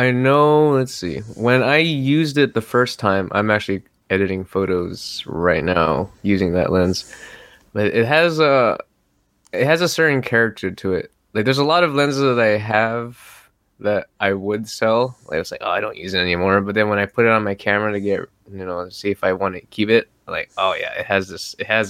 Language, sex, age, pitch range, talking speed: English, male, 20-39, 95-110 Hz, 225 wpm